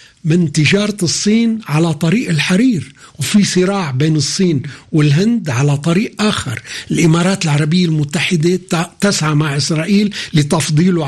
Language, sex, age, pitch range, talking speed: Arabic, male, 60-79, 145-195 Hz, 115 wpm